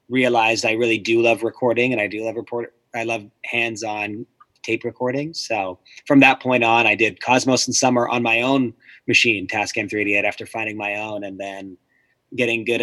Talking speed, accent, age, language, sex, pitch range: 185 wpm, American, 30-49, English, male, 105-120 Hz